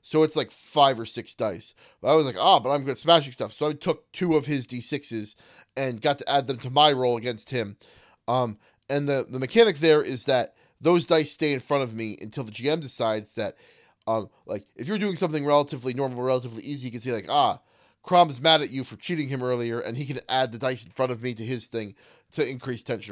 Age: 20-39